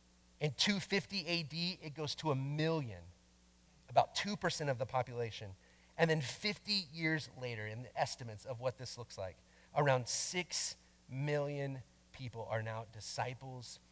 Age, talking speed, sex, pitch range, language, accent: 30-49, 140 wpm, male, 100-160 Hz, English, American